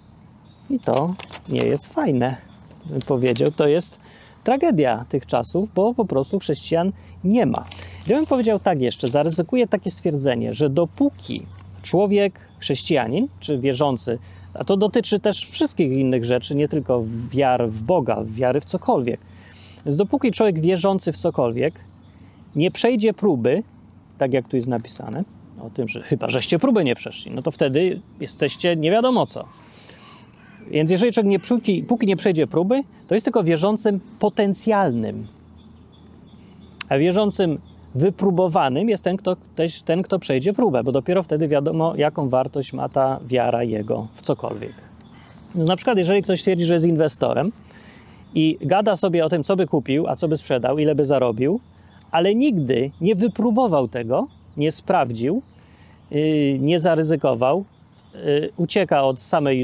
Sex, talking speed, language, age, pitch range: male, 145 wpm, Polish, 30-49, 130-195 Hz